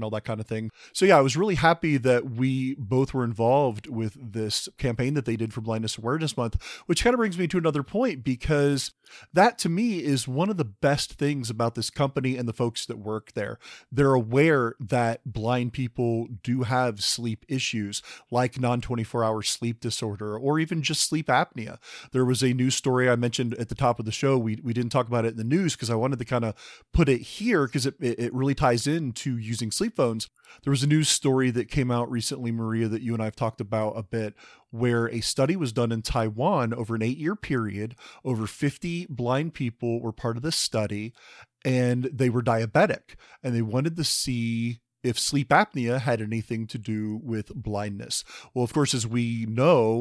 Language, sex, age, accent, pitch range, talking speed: English, male, 30-49, American, 115-135 Hz, 210 wpm